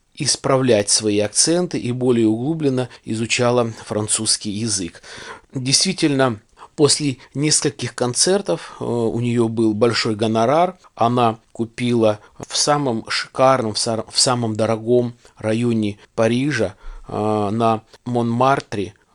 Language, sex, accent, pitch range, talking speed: Russian, male, native, 110-130 Hz, 95 wpm